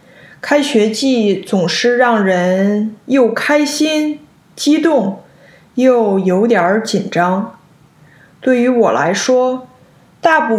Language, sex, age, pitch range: Chinese, female, 20-39, 185-240 Hz